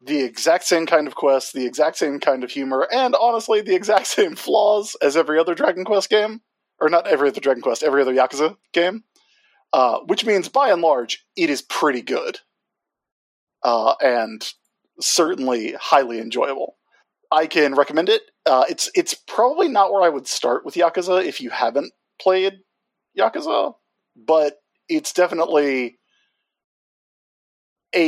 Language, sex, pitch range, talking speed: English, male, 130-210 Hz, 155 wpm